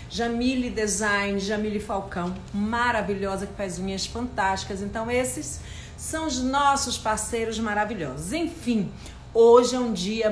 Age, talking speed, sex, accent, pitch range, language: 50-69, 120 wpm, female, Brazilian, 205-265 Hz, Portuguese